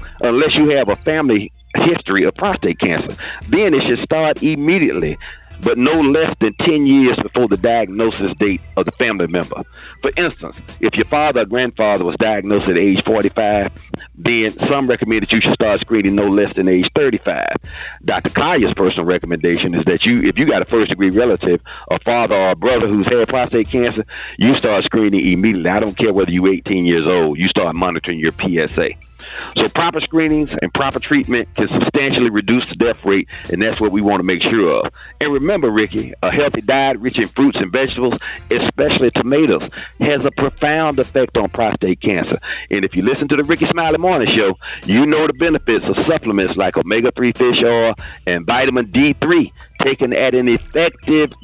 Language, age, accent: English, 50-69, American